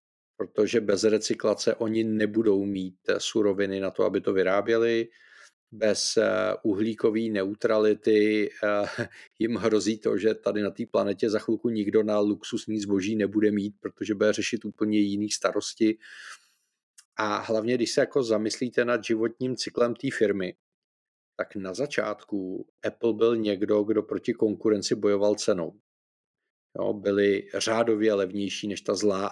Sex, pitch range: male, 105-115 Hz